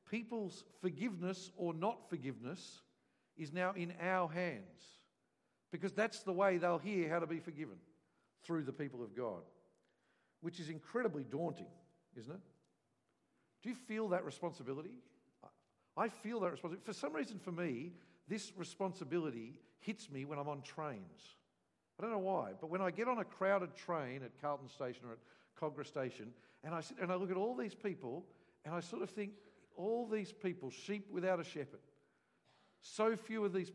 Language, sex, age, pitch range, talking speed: English, male, 50-69, 140-190 Hz, 175 wpm